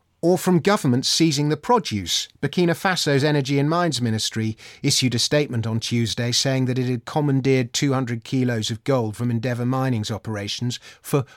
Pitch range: 110-155 Hz